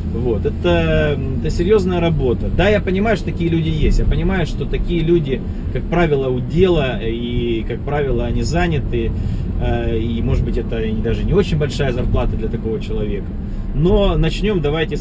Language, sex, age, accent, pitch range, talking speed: Russian, male, 30-49, native, 110-160 Hz, 165 wpm